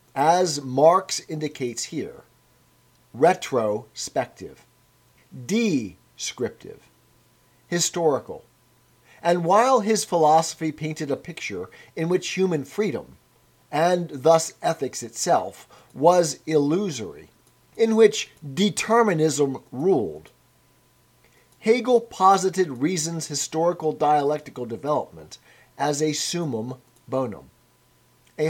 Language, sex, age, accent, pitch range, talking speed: English, male, 40-59, American, 135-190 Hz, 80 wpm